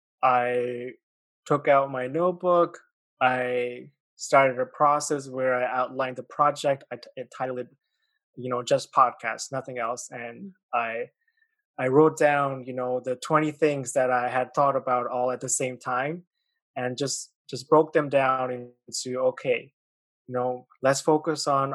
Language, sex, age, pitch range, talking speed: English, male, 20-39, 125-150 Hz, 160 wpm